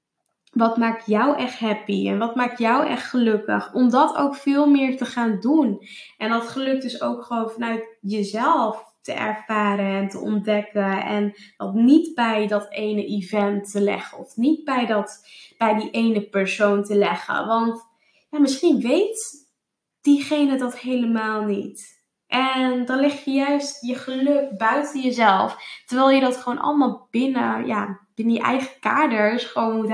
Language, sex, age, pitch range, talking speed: Dutch, female, 10-29, 210-270 Hz, 165 wpm